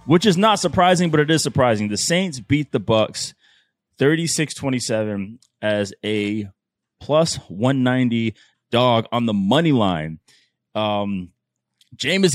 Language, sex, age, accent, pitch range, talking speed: English, male, 20-39, American, 105-135 Hz, 125 wpm